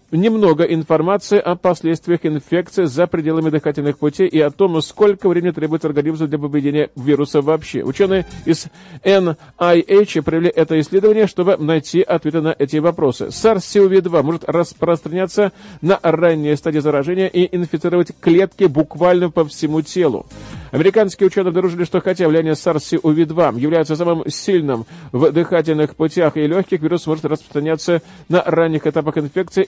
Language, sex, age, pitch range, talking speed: Russian, male, 40-59, 155-180 Hz, 135 wpm